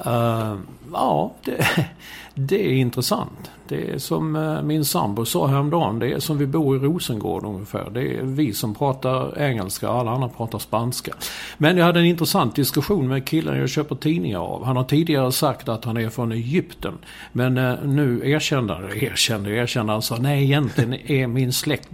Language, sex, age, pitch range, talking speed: Swedish, male, 50-69, 115-150 Hz, 170 wpm